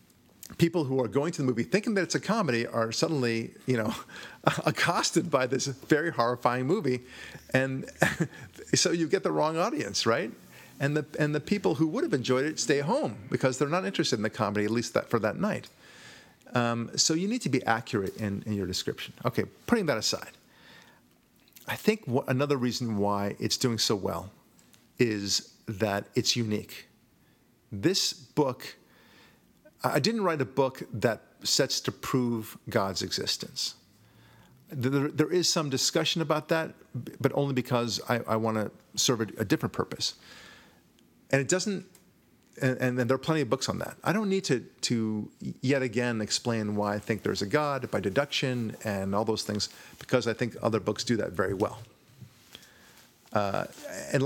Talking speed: 175 wpm